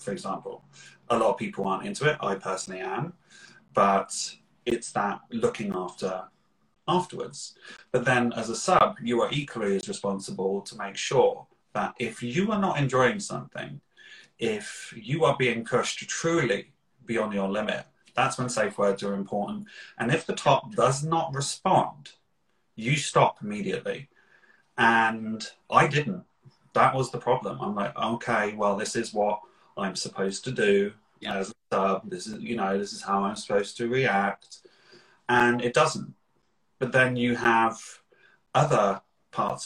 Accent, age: British, 30-49